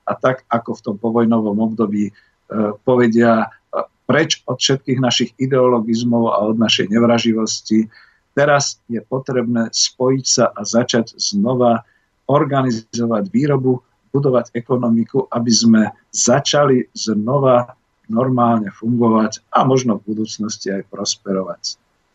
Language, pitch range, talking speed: Slovak, 110-125 Hz, 115 wpm